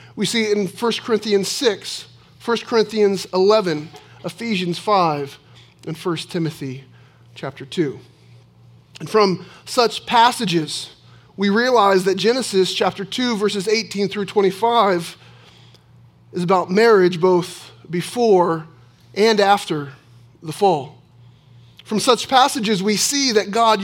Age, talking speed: 30-49, 120 wpm